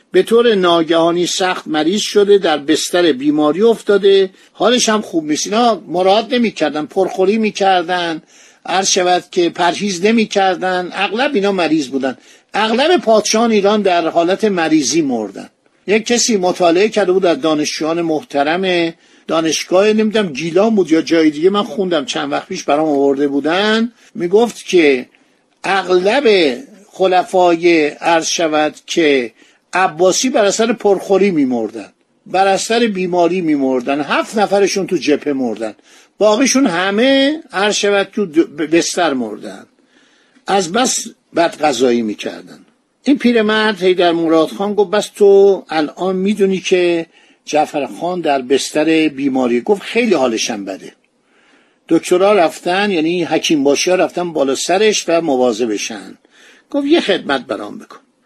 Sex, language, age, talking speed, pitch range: male, Persian, 50-69, 130 wpm, 165-215 Hz